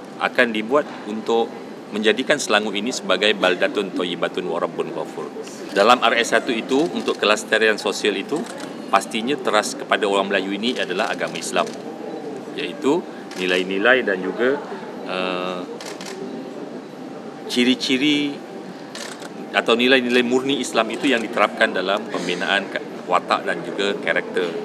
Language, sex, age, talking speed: Malay, male, 40-59, 110 wpm